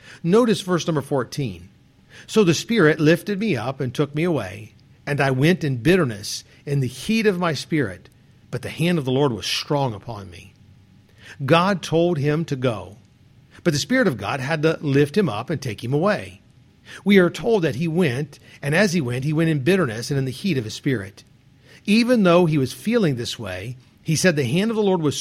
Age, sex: 50-69, male